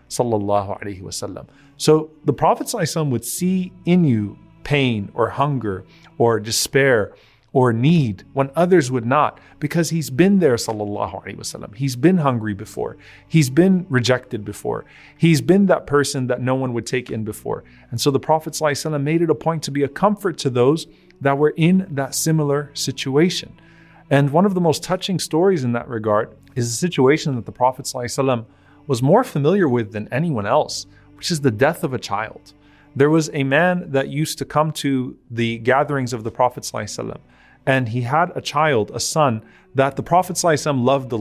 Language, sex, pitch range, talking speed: English, male, 120-160 Hz, 180 wpm